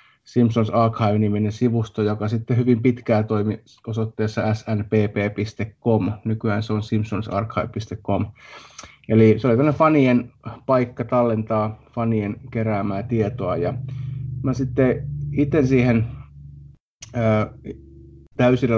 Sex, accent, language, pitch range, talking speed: male, native, Finnish, 110-120 Hz, 95 wpm